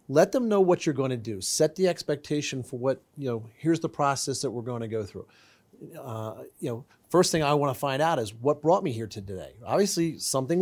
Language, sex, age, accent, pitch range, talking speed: English, male, 40-59, American, 125-150 Hz, 245 wpm